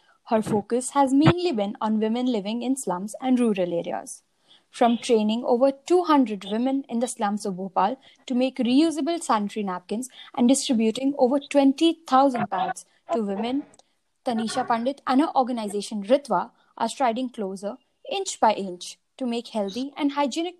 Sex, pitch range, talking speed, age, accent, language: female, 210-275 Hz, 150 wpm, 20-39, Indian, English